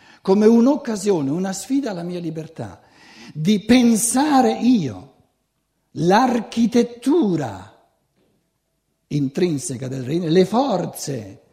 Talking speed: 85 wpm